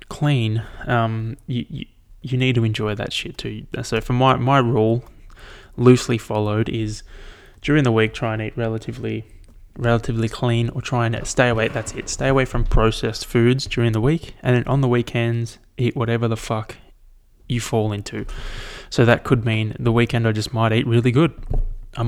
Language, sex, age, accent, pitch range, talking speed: English, male, 20-39, Australian, 110-125 Hz, 180 wpm